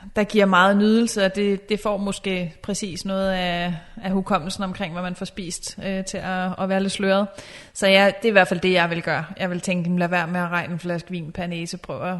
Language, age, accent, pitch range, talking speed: Danish, 30-49, native, 180-205 Hz, 245 wpm